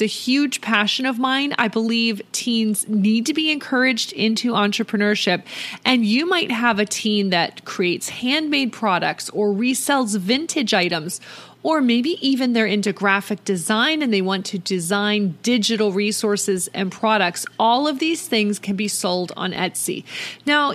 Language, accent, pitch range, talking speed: English, American, 200-275 Hz, 155 wpm